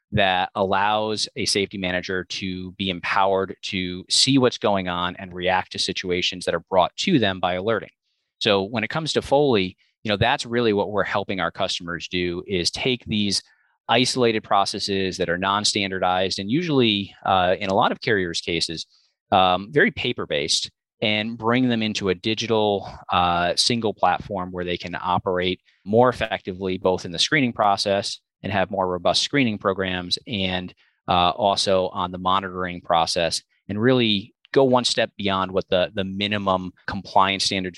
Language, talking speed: English, 165 wpm